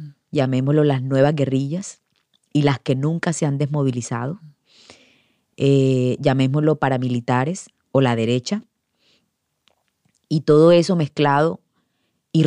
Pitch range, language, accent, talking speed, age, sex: 130-150 Hz, German, American, 105 wpm, 30-49, female